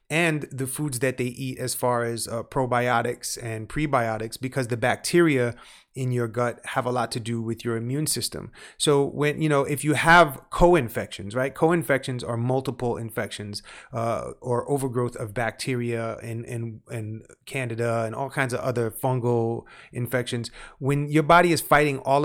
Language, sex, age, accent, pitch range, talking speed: English, male, 30-49, American, 120-140 Hz, 165 wpm